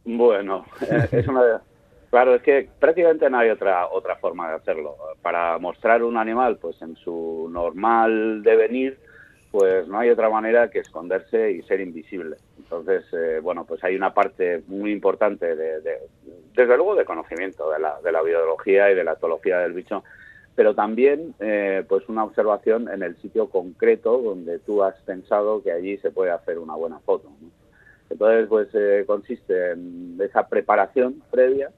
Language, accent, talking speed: Spanish, Spanish, 170 wpm